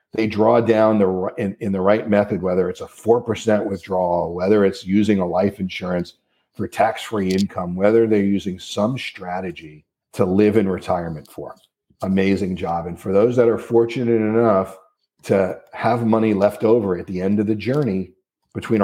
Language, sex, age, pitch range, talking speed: English, male, 50-69, 95-115 Hz, 170 wpm